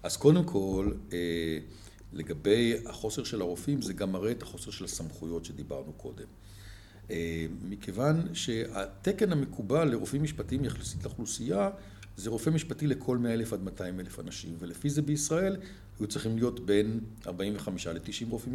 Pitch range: 95-145 Hz